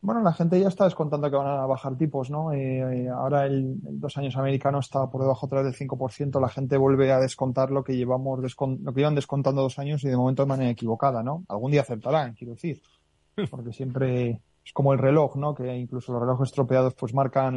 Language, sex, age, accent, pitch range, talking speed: Spanish, male, 20-39, Spanish, 125-145 Hz, 220 wpm